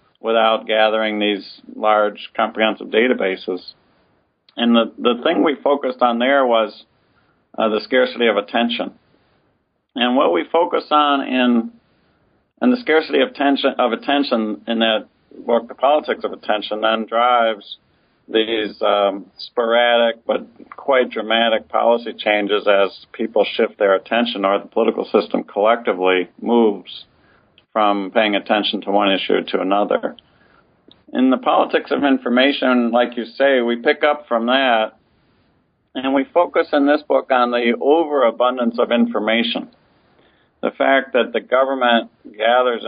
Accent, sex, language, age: American, male, English, 50-69